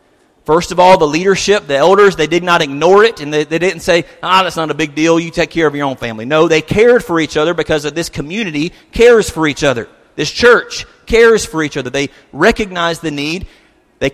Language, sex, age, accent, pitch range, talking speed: English, male, 40-59, American, 150-195 Hz, 235 wpm